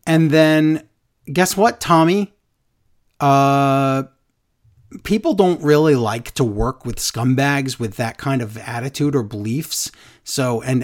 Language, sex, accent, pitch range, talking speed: English, male, American, 115-145 Hz, 125 wpm